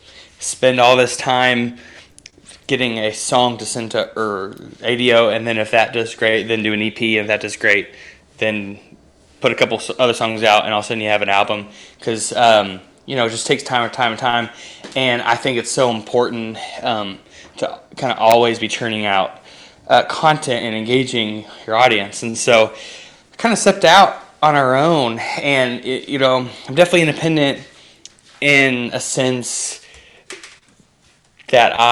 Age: 20-39